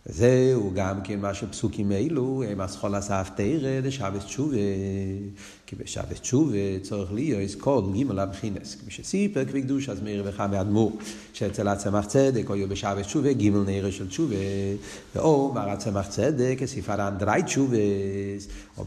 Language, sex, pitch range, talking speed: Hebrew, male, 100-135 Hz, 150 wpm